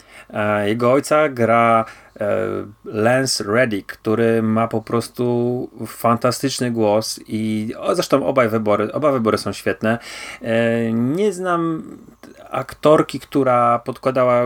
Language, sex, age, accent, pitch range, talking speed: Polish, male, 30-49, native, 115-135 Hz, 90 wpm